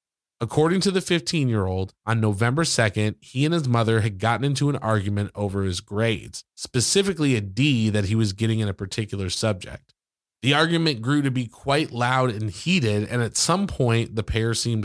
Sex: male